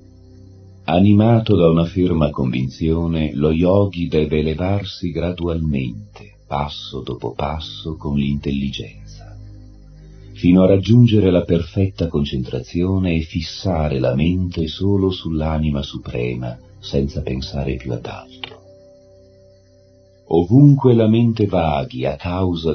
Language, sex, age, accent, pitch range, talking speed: Italian, male, 40-59, native, 70-90 Hz, 105 wpm